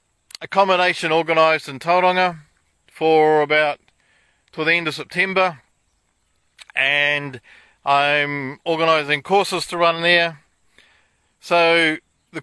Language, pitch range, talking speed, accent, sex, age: English, 150-180 Hz, 95 wpm, Australian, male, 40-59